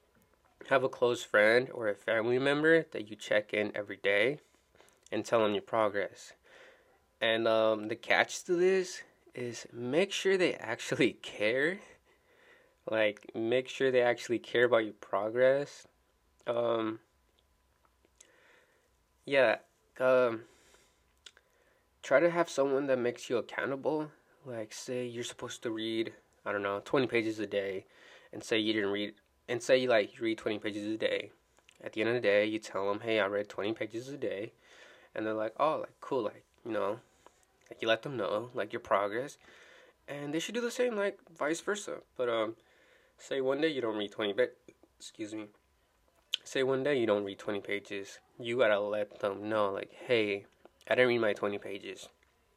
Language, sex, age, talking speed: English, male, 20-39, 175 wpm